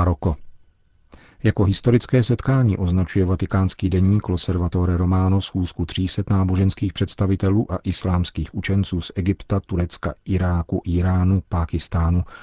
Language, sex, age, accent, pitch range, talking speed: Czech, male, 40-59, native, 90-100 Hz, 105 wpm